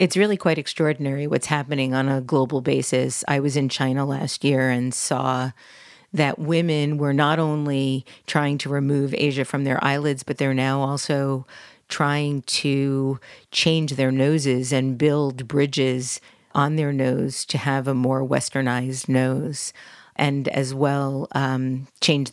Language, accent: English, American